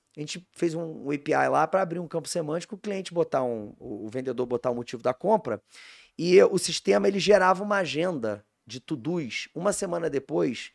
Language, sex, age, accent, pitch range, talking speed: Portuguese, male, 20-39, Brazilian, 120-170 Hz, 200 wpm